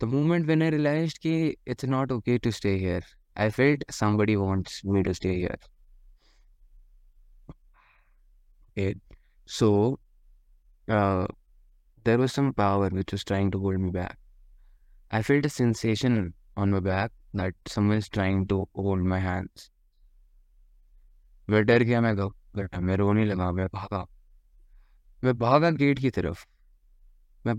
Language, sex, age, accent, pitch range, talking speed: Hindi, male, 20-39, native, 90-115 Hz, 130 wpm